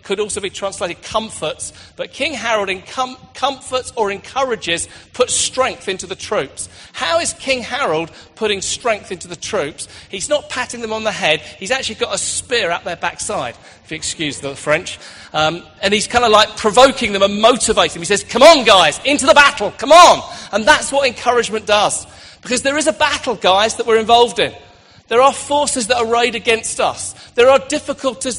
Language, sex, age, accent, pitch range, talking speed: English, male, 40-59, British, 205-270 Hz, 195 wpm